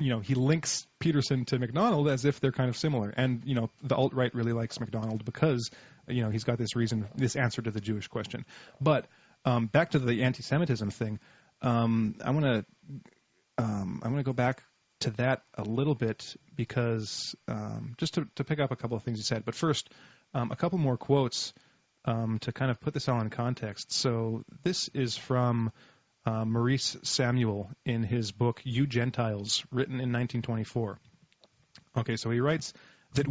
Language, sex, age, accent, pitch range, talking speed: English, male, 30-49, American, 115-140 Hz, 190 wpm